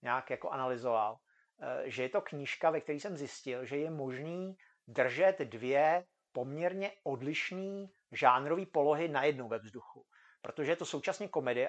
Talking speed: 150 wpm